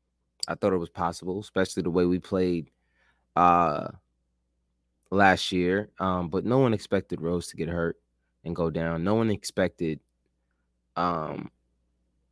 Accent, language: American, English